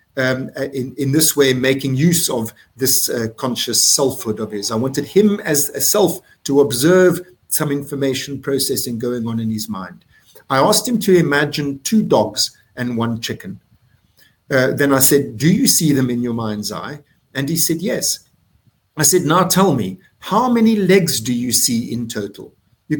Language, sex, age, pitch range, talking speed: English, male, 50-69, 120-155 Hz, 185 wpm